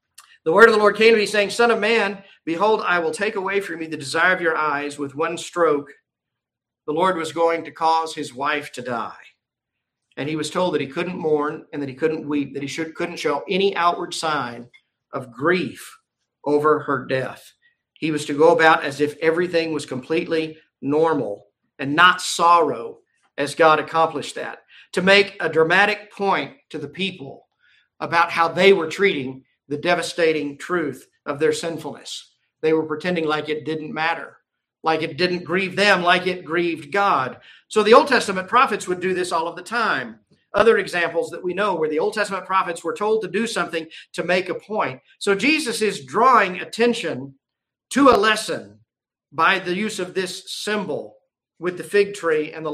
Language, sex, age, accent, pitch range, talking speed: English, male, 50-69, American, 155-195 Hz, 190 wpm